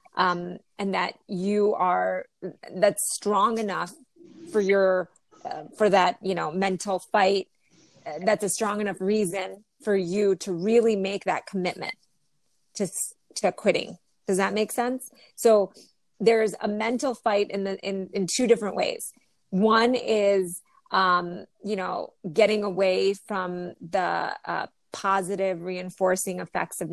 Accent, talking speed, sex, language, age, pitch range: American, 140 wpm, female, English, 30-49, 185-210 Hz